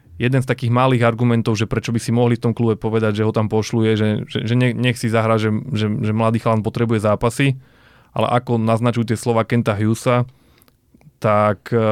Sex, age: male, 20-39